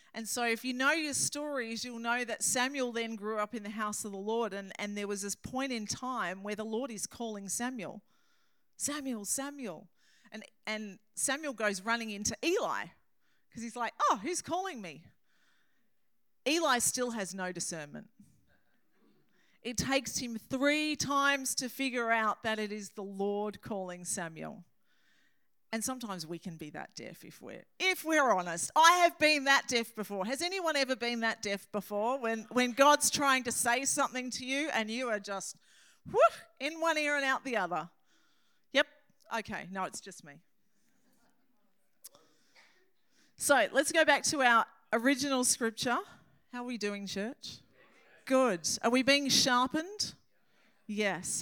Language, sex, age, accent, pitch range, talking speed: English, female, 40-59, Australian, 210-275 Hz, 165 wpm